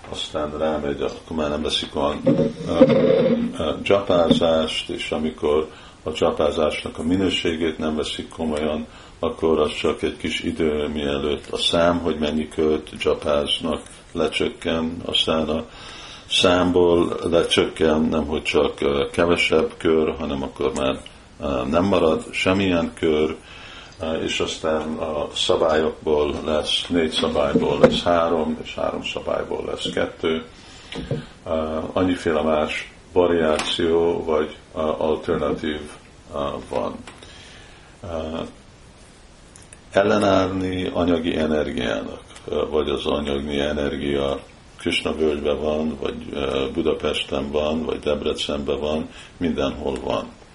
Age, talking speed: 50-69, 100 wpm